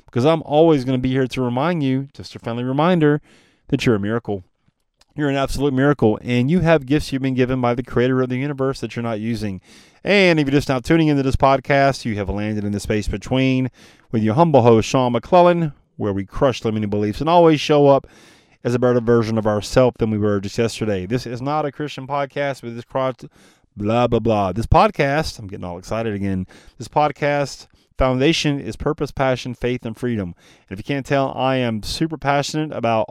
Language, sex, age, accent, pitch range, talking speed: English, male, 30-49, American, 110-145 Hz, 215 wpm